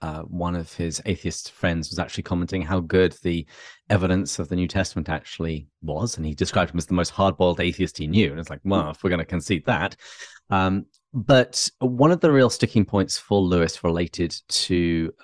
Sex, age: male, 30-49